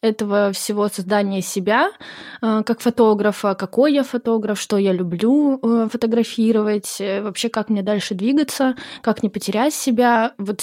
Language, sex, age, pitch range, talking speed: Russian, female, 20-39, 195-230 Hz, 130 wpm